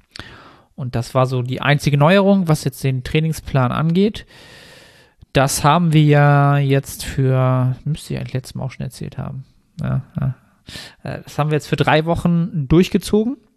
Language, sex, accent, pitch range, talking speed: German, male, German, 130-155 Hz, 170 wpm